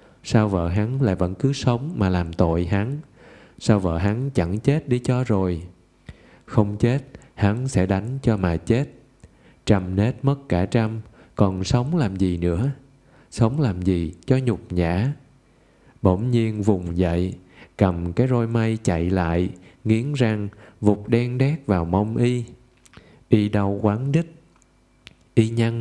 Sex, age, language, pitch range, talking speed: male, 20-39, Vietnamese, 90-120 Hz, 155 wpm